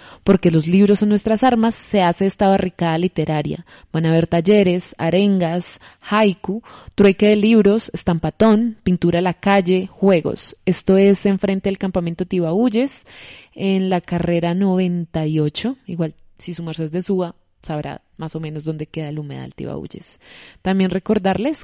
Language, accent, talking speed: Spanish, Colombian, 145 wpm